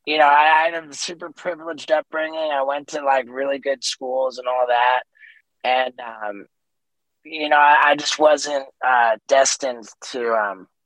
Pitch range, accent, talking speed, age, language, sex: 120-145 Hz, American, 170 wpm, 20-39, English, male